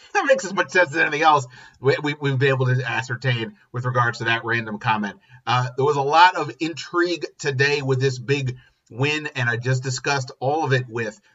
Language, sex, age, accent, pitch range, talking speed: English, male, 30-49, American, 110-130 Hz, 215 wpm